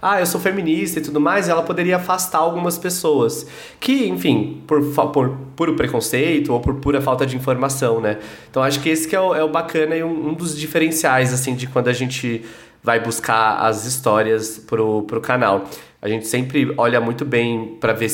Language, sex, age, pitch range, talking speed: Portuguese, male, 20-39, 115-150 Hz, 195 wpm